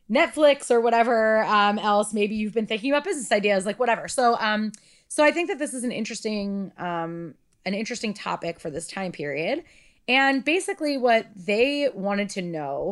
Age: 30-49